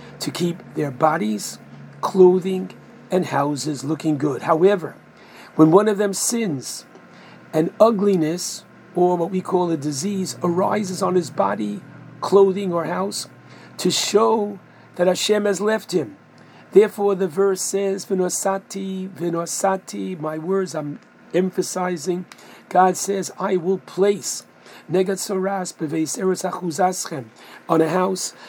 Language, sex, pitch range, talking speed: English, male, 160-195 Hz, 115 wpm